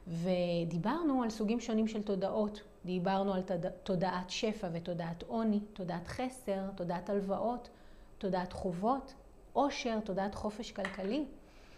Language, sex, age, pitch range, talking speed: Hebrew, female, 30-49, 190-255 Hz, 115 wpm